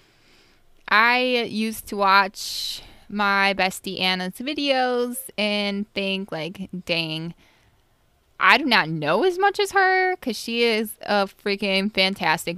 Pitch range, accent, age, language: 170-230 Hz, American, 10-29, English